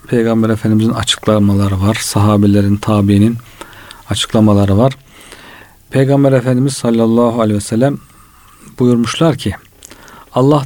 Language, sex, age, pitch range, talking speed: Turkish, male, 50-69, 105-130 Hz, 95 wpm